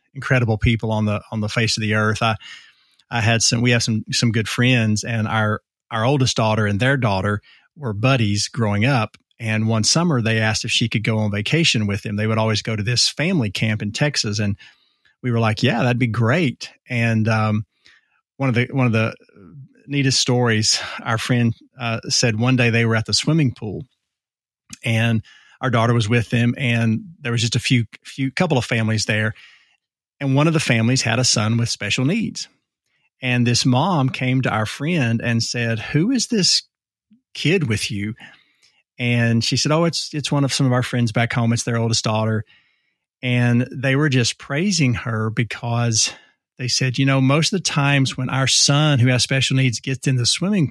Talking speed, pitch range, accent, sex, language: 205 wpm, 110-135 Hz, American, male, English